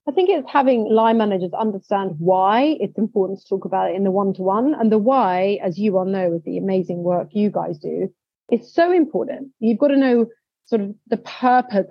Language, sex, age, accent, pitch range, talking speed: English, female, 30-49, British, 185-235 Hz, 210 wpm